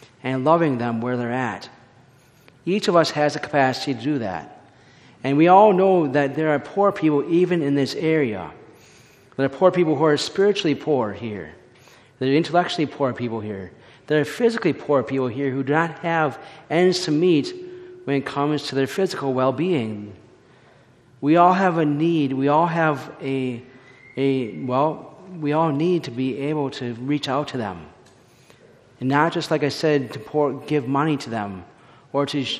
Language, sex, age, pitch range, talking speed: English, male, 40-59, 135-165 Hz, 180 wpm